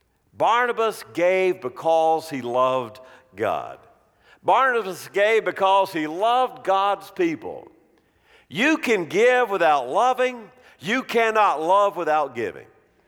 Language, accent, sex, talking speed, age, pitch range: English, American, male, 105 wpm, 50-69, 155-240 Hz